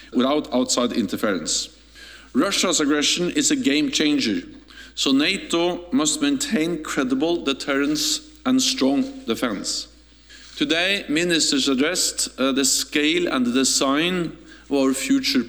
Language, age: English, 50-69